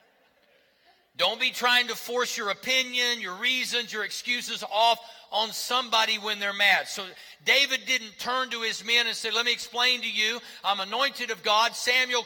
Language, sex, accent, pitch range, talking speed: English, male, American, 200-235 Hz, 175 wpm